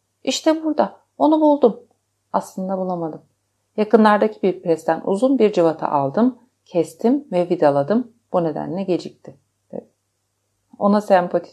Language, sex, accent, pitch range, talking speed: Turkish, female, native, 140-205 Hz, 115 wpm